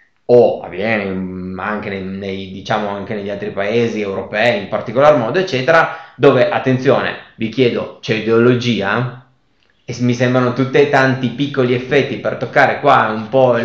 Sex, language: male, Italian